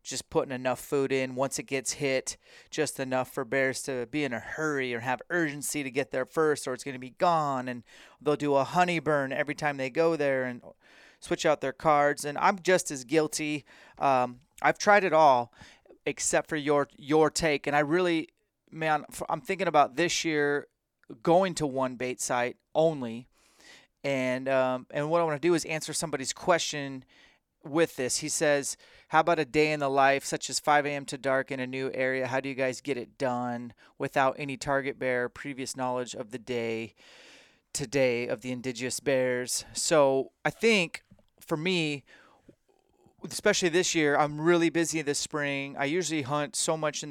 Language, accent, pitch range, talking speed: English, American, 130-155 Hz, 190 wpm